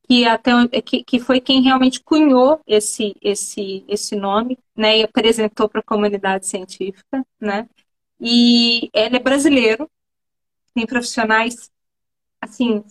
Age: 20-39